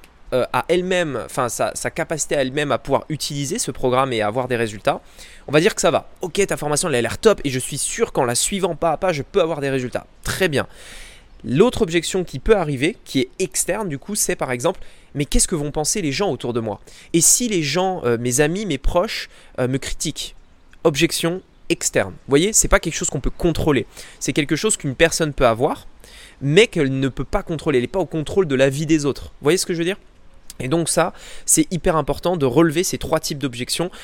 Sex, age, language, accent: male, 20-39, French, French